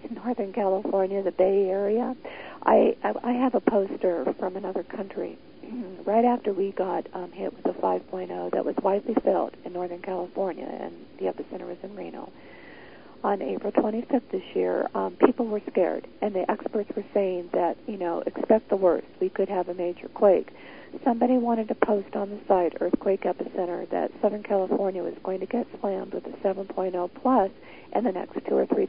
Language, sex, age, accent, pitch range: Japanese, female, 50-69, American, 190-245 Hz